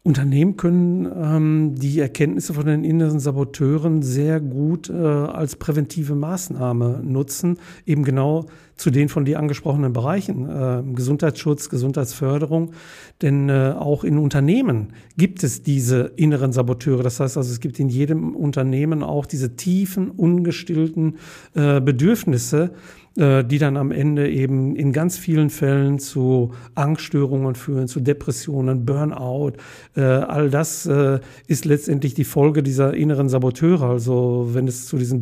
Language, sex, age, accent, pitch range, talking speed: German, male, 50-69, German, 135-155 Hz, 140 wpm